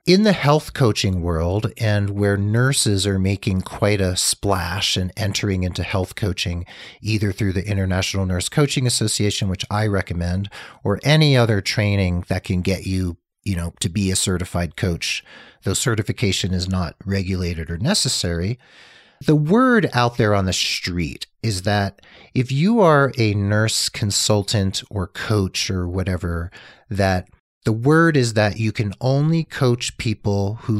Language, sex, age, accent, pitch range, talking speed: English, male, 40-59, American, 95-115 Hz, 160 wpm